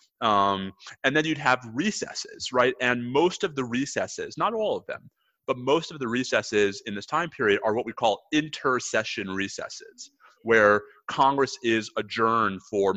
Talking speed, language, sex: 165 wpm, English, male